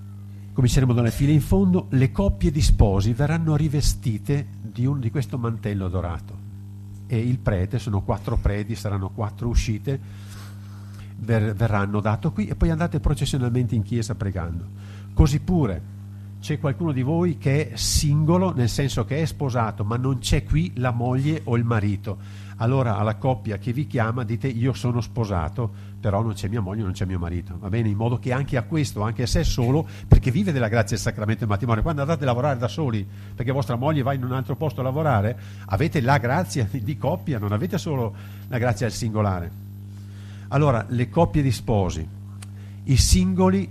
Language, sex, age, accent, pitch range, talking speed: Italian, male, 50-69, native, 100-135 Hz, 185 wpm